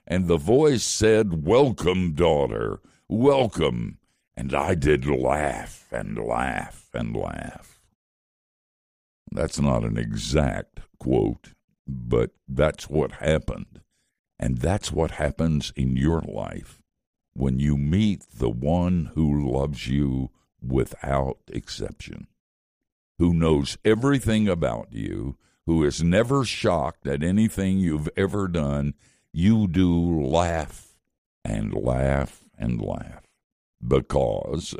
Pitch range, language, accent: 70-95 Hz, English, American